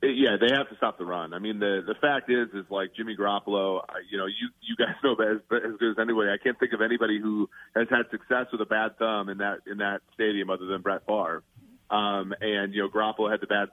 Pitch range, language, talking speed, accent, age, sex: 100-115 Hz, English, 260 wpm, American, 30-49, male